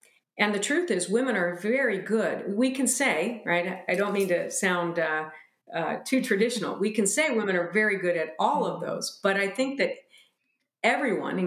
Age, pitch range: 50-69, 170-215 Hz